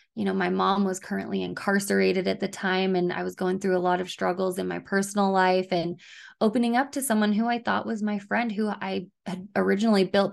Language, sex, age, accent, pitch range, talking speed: English, female, 20-39, American, 185-210 Hz, 225 wpm